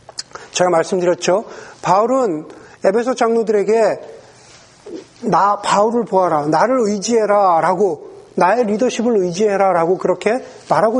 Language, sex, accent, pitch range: Korean, male, native, 195-255 Hz